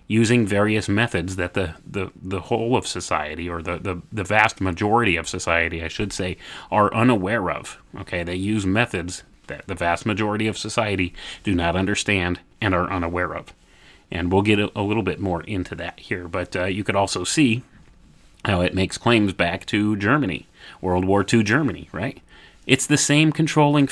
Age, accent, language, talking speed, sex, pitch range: 30-49, American, English, 185 wpm, male, 85-110 Hz